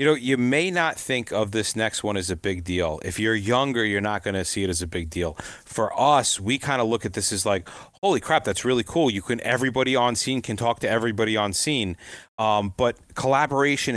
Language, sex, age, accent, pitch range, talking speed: English, male, 30-49, American, 105-130 Hz, 240 wpm